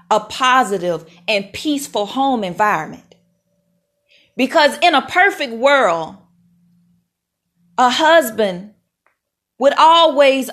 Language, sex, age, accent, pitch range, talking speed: English, female, 40-59, American, 175-285 Hz, 85 wpm